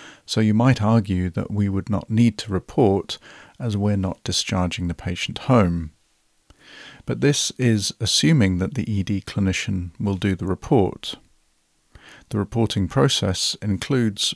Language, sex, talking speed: English, male, 140 wpm